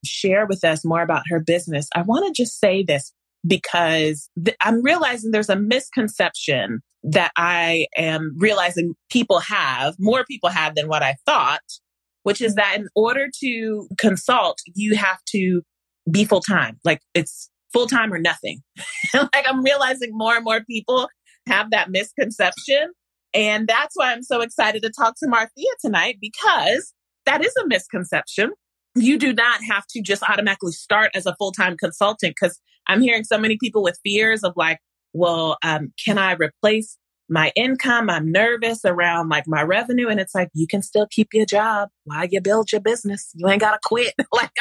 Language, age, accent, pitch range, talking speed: English, 30-49, American, 175-230 Hz, 175 wpm